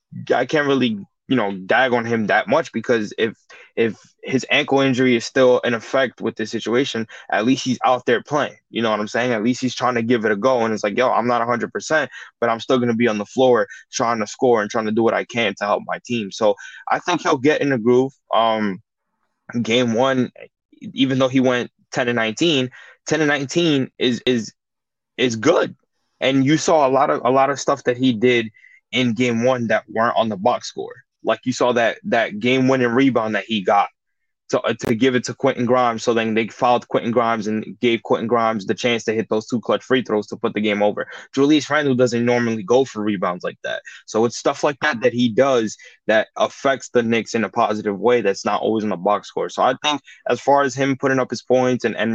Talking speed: 240 wpm